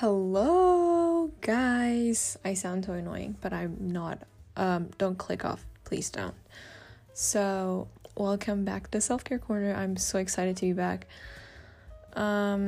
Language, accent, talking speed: English, American, 135 wpm